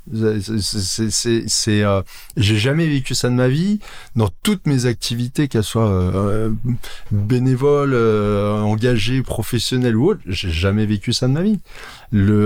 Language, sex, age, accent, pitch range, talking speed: French, male, 20-39, French, 95-120 Hz, 155 wpm